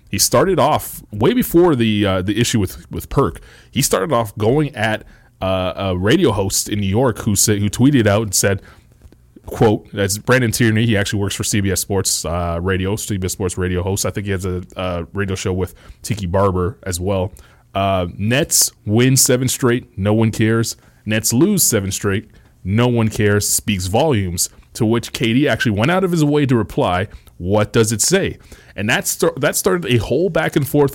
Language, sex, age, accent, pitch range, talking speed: English, male, 30-49, American, 100-125 Hz, 200 wpm